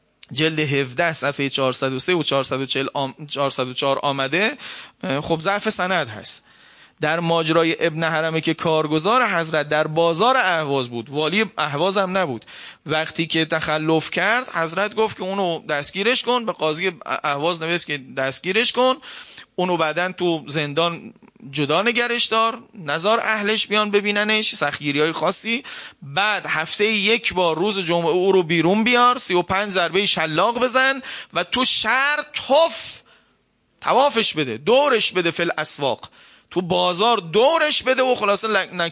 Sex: male